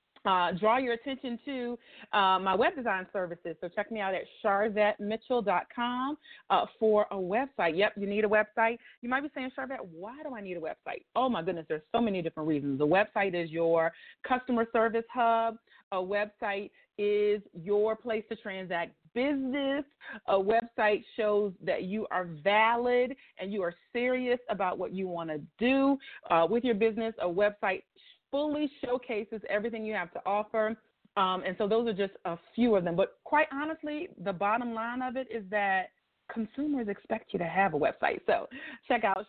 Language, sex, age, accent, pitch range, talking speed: English, female, 30-49, American, 195-255 Hz, 180 wpm